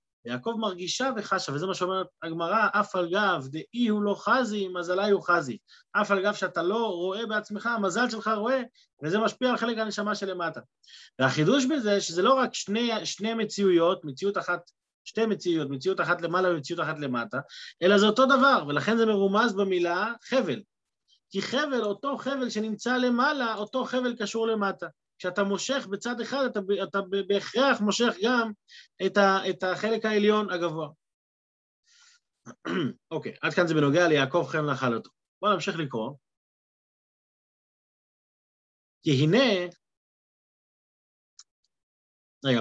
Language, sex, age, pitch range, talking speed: Hebrew, male, 30-49, 160-220 Hz, 145 wpm